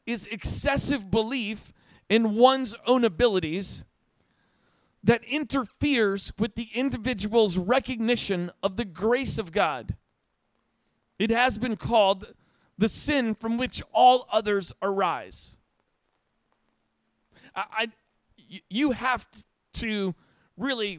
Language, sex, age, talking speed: English, male, 40-59, 95 wpm